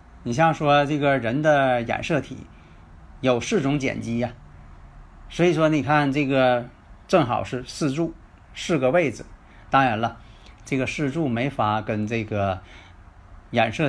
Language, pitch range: Chinese, 95-145 Hz